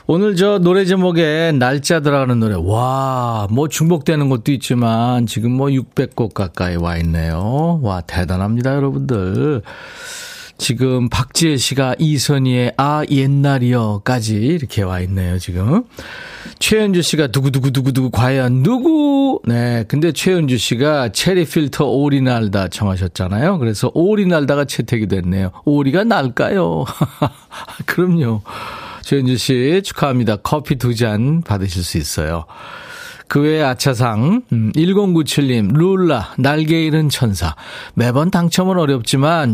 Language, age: Korean, 40-59